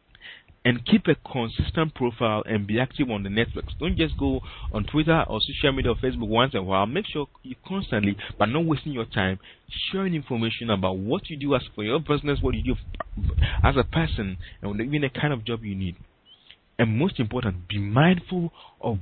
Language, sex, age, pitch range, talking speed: English, male, 40-59, 100-135 Hz, 200 wpm